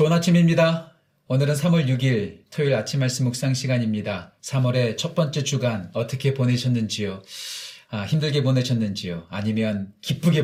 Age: 40-59